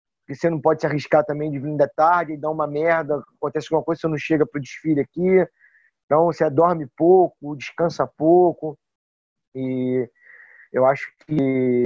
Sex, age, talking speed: male, 20-39, 175 wpm